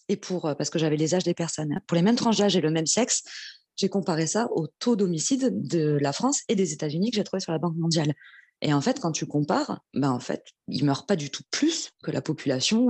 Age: 20-39